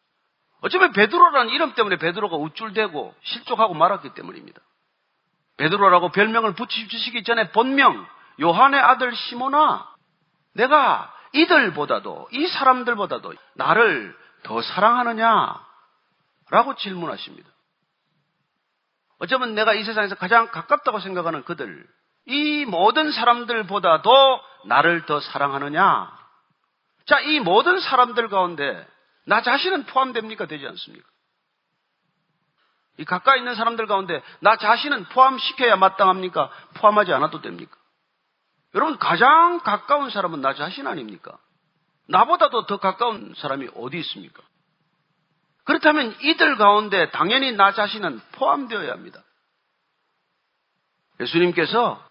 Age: 40-59